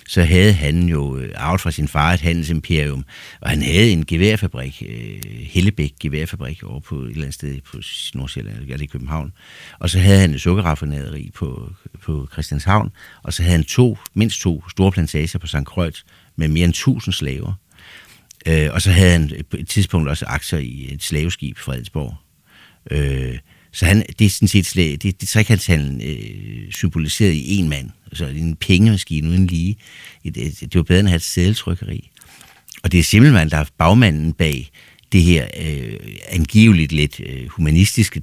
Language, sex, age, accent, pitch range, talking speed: Danish, male, 60-79, native, 75-95 Hz, 175 wpm